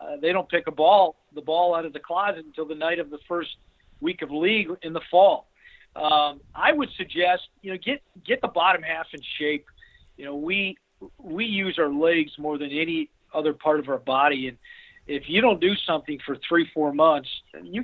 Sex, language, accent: male, English, American